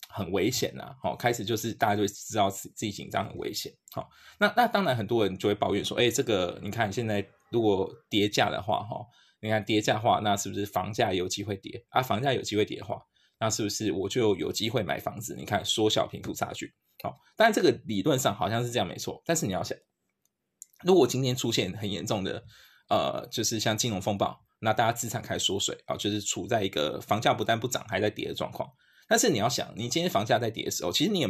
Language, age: Chinese, 20-39